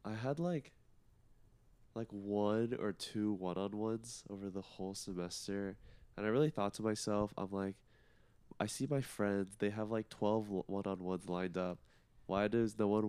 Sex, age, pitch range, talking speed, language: male, 20-39, 95-110 Hz, 180 wpm, English